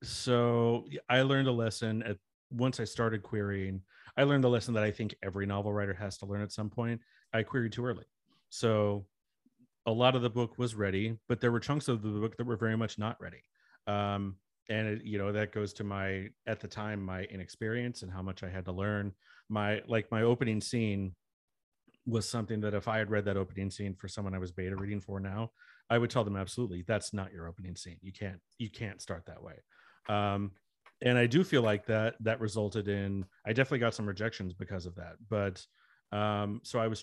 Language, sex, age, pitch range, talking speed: English, male, 30-49, 95-115 Hz, 215 wpm